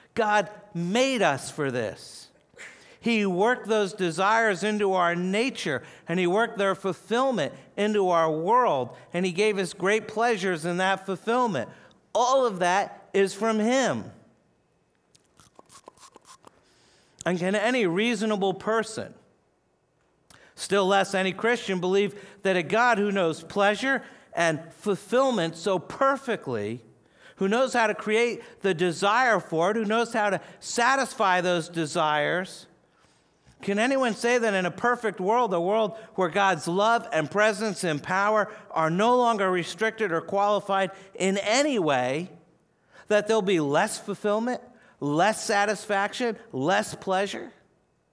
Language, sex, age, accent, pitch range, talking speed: English, male, 50-69, American, 185-225 Hz, 130 wpm